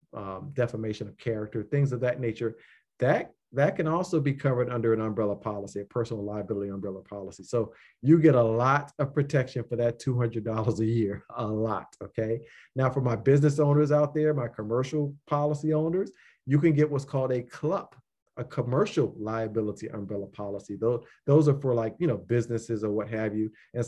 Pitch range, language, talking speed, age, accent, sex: 110-140 Hz, English, 190 wpm, 40-59, American, male